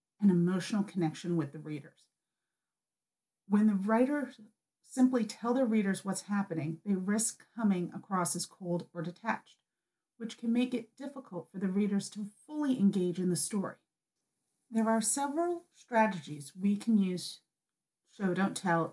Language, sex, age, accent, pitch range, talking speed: English, female, 40-59, American, 175-220 Hz, 150 wpm